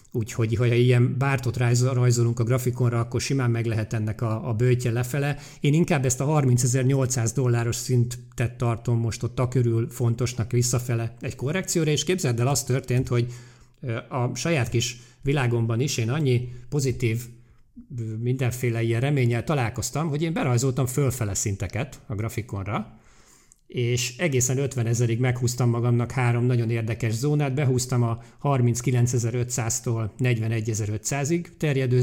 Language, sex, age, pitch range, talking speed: Hungarian, male, 50-69, 115-135 Hz, 130 wpm